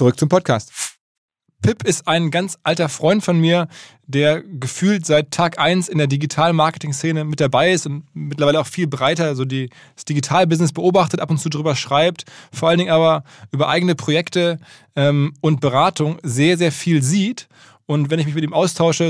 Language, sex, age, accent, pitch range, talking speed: German, male, 20-39, German, 145-170 Hz, 180 wpm